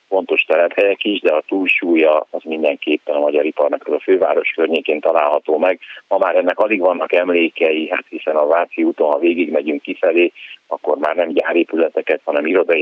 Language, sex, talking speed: Hungarian, male, 175 wpm